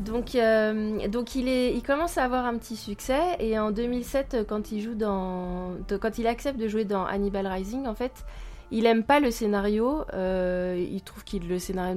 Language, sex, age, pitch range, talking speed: French, female, 20-39, 185-225 Hz, 200 wpm